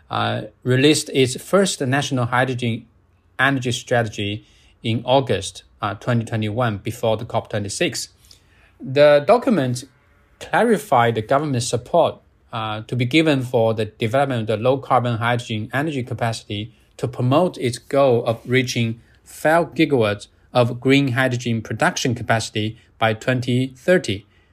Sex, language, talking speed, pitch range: male, English, 140 wpm, 115-140 Hz